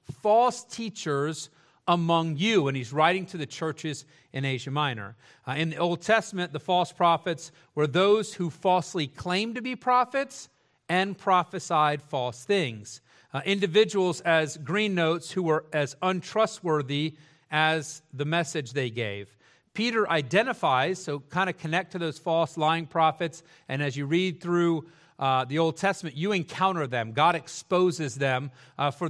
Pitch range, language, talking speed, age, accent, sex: 150-190 Hz, English, 155 wpm, 40-59, American, male